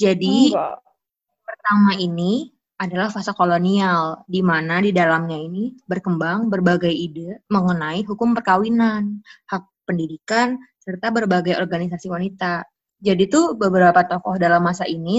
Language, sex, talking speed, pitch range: Indonesian, female, 120 wpm, 180-210 Hz